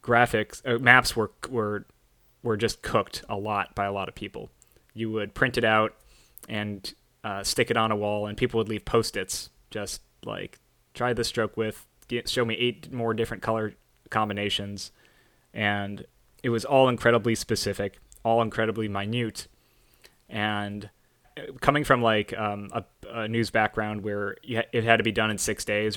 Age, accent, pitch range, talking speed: 20-39, American, 105-115 Hz, 165 wpm